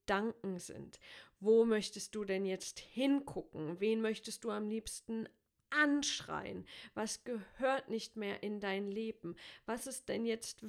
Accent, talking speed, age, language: German, 135 wpm, 40-59, German